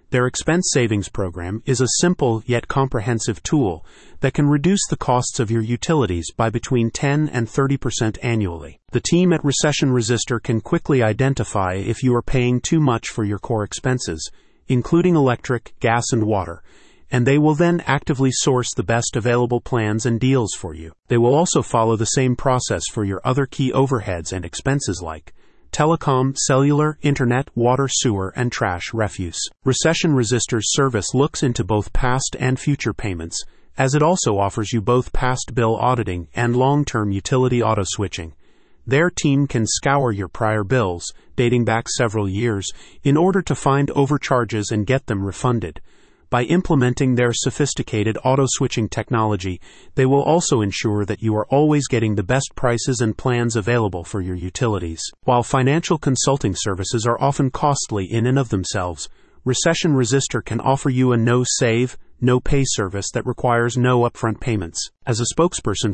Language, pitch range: English, 110-135 Hz